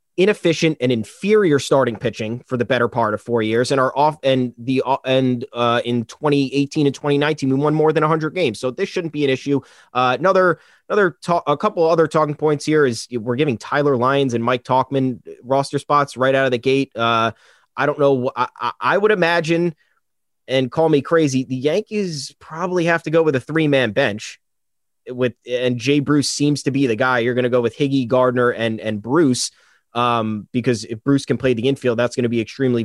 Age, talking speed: 30-49, 210 wpm